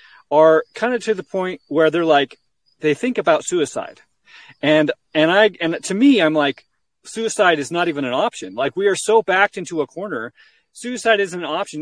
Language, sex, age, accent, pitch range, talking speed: English, male, 40-59, American, 160-220 Hz, 205 wpm